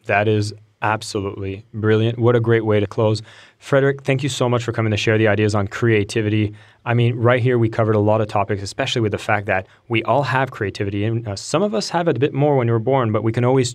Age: 20-39